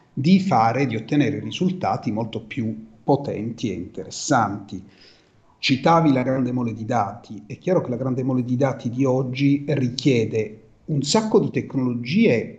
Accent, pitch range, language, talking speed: native, 115-150 Hz, Italian, 150 wpm